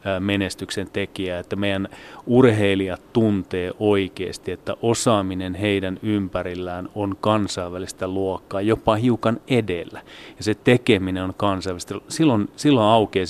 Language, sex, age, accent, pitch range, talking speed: Finnish, male, 30-49, native, 95-105 Hz, 115 wpm